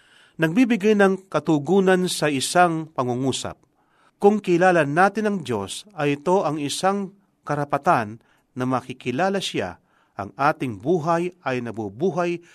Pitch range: 130-180 Hz